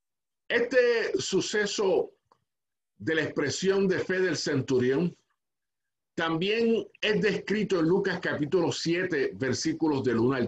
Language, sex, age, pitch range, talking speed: Spanish, male, 50-69, 160-225 Hz, 115 wpm